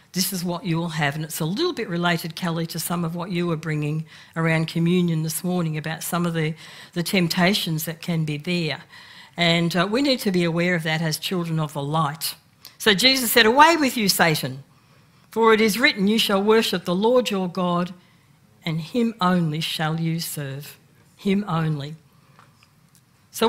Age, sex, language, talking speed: 60-79, female, English, 190 wpm